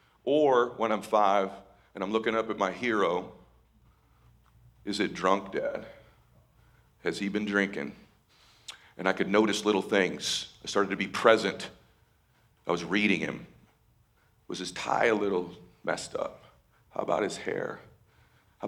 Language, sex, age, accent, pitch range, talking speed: English, male, 40-59, American, 105-170 Hz, 150 wpm